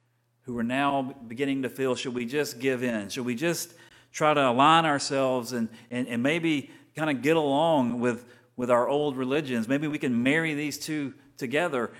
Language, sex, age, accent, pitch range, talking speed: English, male, 40-59, American, 115-140 Hz, 190 wpm